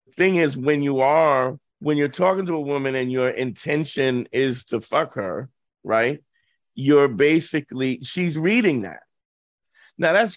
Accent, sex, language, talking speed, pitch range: American, male, English, 150 wpm, 135-175 Hz